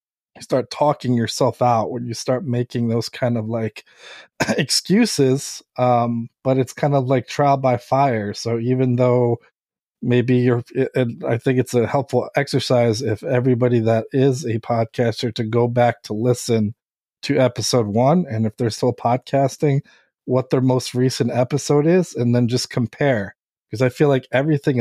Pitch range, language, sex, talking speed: 115-130 Hz, English, male, 165 wpm